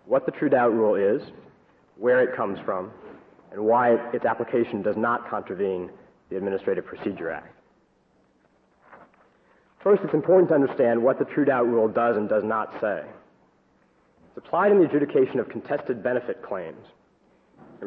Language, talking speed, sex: English, 160 wpm, male